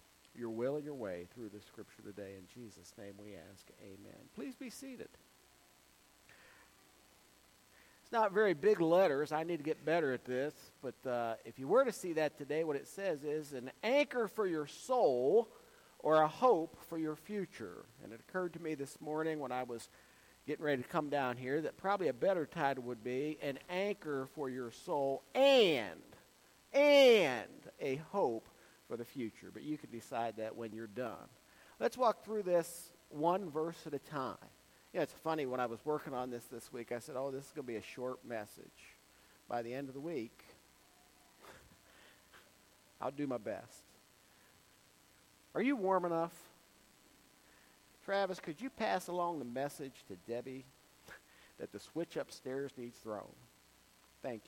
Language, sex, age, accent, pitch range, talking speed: English, male, 50-69, American, 120-170 Hz, 175 wpm